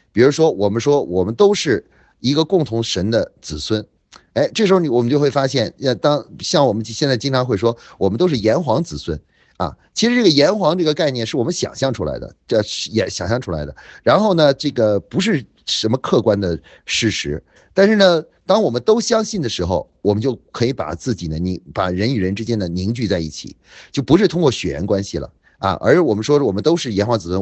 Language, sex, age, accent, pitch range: Chinese, male, 30-49, native, 95-145 Hz